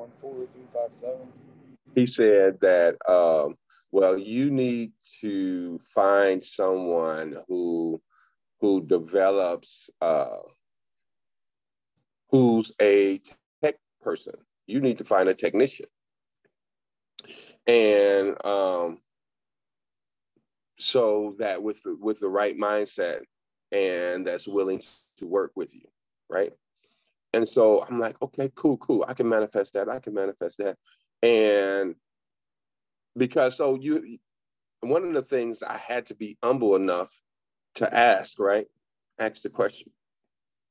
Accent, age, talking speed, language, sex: American, 40-59, 110 wpm, English, male